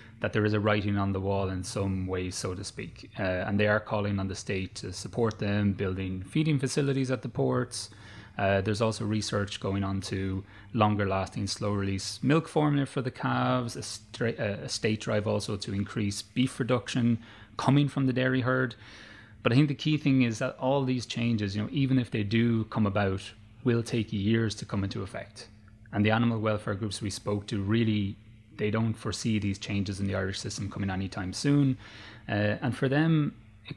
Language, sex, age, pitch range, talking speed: English, male, 30-49, 100-120 Hz, 205 wpm